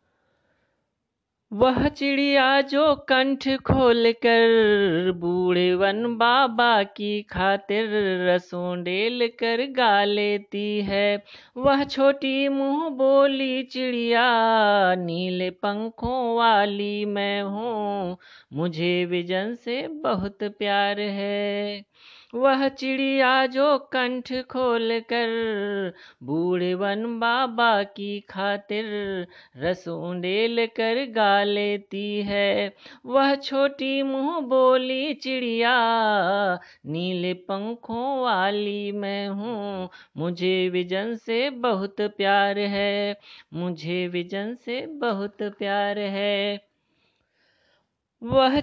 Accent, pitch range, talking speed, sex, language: native, 200-255 Hz, 85 wpm, female, Hindi